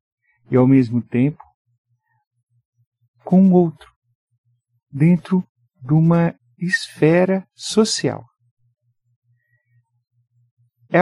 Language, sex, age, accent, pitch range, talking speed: Portuguese, male, 50-69, Brazilian, 120-195 Hz, 70 wpm